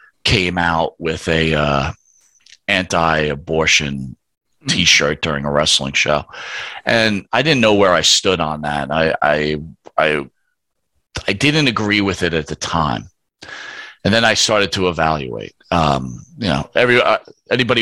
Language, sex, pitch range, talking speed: English, male, 85-120 Hz, 145 wpm